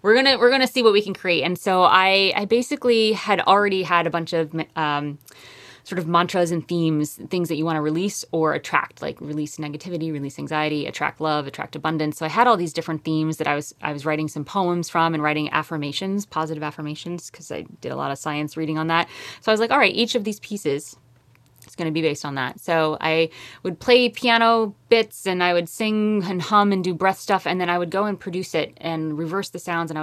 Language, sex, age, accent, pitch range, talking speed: English, female, 20-39, American, 155-190 Hz, 240 wpm